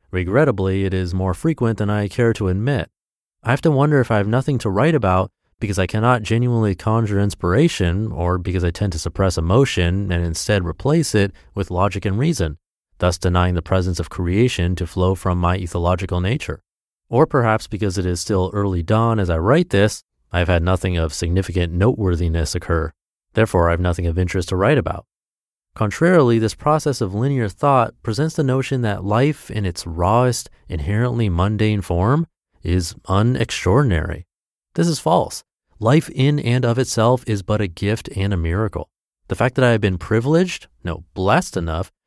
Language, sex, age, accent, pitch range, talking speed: English, male, 30-49, American, 90-120 Hz, 180 wpm